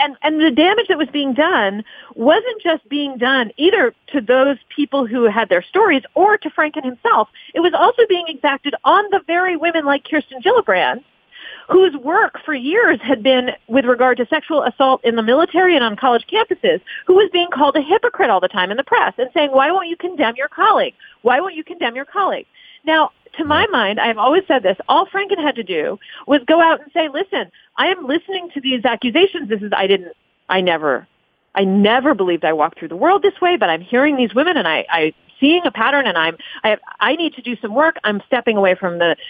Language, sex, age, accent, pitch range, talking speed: English, female, 40-59, American, 235-350 Hz, 225 wpm